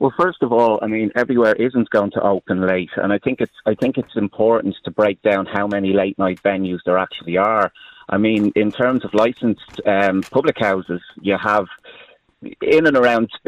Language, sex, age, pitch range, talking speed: English, male, 30-49, 100-125 Hz, 200 wpm